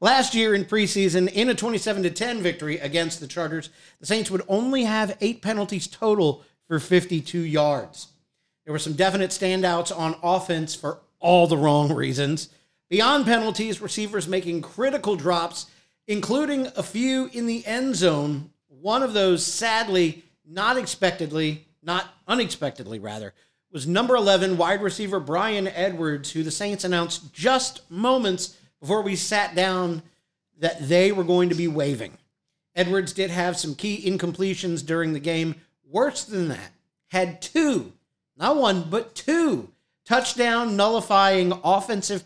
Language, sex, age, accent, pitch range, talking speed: English, male, 50-69, American, 170-210 Hz, 145 wpm